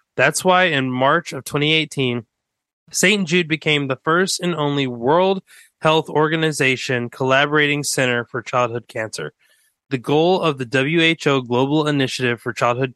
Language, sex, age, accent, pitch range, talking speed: English, male, 20-39, American, 125-155 Hz, 140 wpm